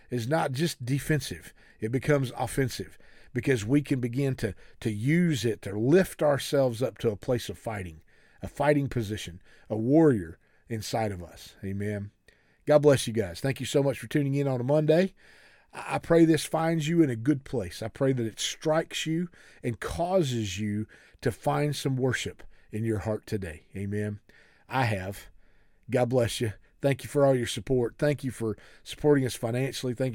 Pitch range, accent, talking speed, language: 105-140 Hz, American, 185 wpm, English